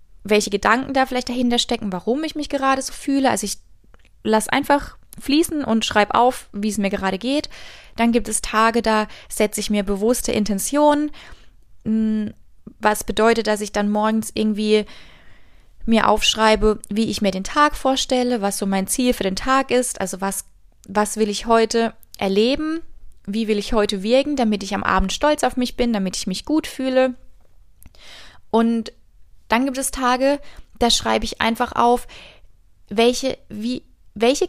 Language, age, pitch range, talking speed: German, 20-39, 205-250 Hz, 165 wpm